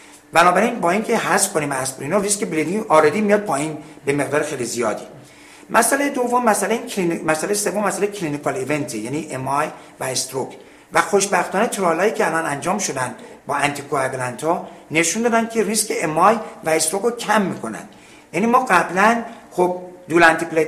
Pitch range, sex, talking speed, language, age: 150-215 Hz, male, 155 wpm, Persian, 60-79